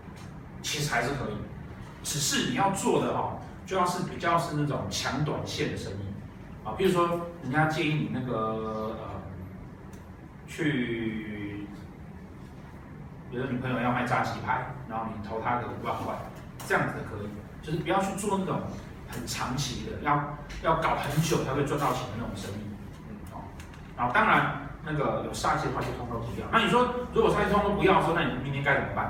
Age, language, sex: 40-59, Chinese, male